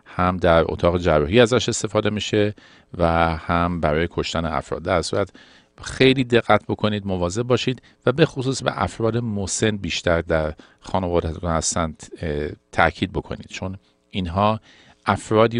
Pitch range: 85-110 Hz